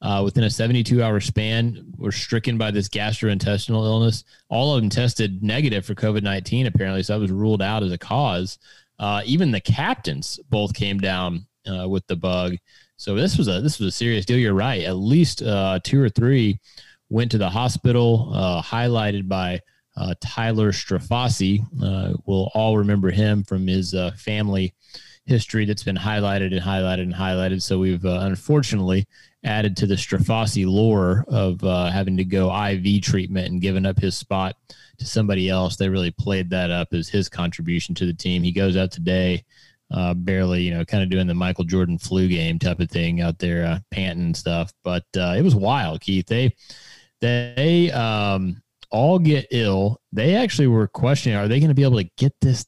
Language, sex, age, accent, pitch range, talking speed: English, male, 30-49, American, 95-115 Hz, 190 wpm